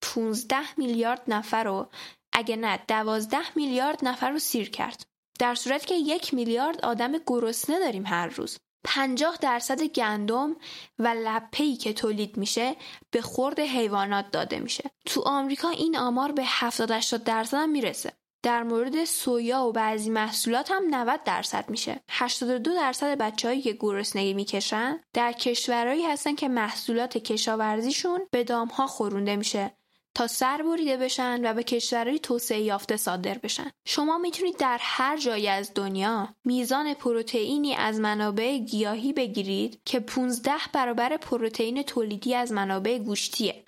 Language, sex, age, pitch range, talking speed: Persian, female, 10-29, 220-270 Hz, 140 wpm